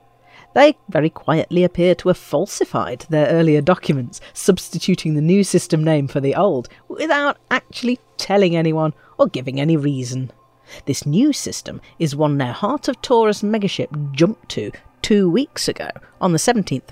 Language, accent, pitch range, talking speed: English, British, 145-210 Hz, 155 wpm